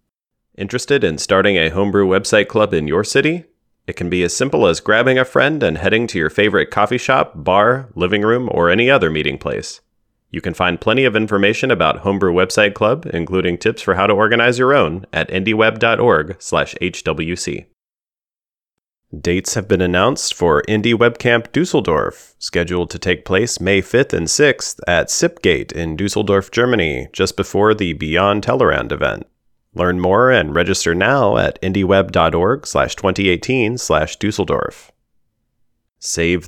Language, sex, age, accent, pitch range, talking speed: English, male, 30-49, American, 90-115 Hz, 155 wpm